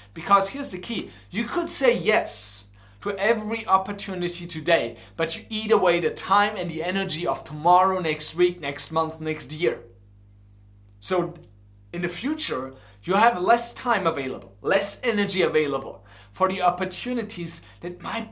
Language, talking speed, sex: English, 150 wpm, male